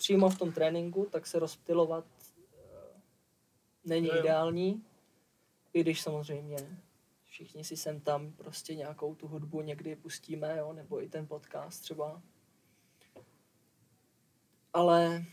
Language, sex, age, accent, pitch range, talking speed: Czech, male, 20-39, native, 155-170 Hz, 115 wpm